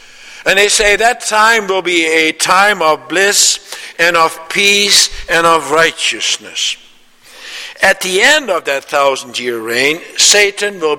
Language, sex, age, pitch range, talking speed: English, male, 60-79, 150-200 Hz, 145 wpm